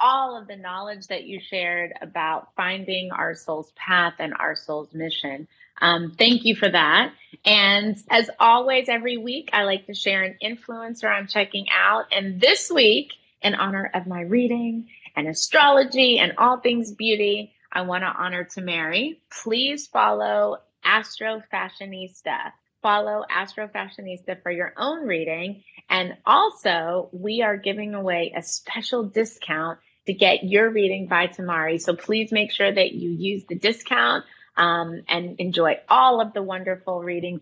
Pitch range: 175-230 Hz